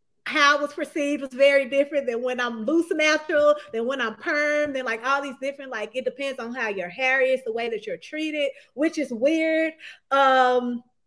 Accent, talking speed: American, 205 wpm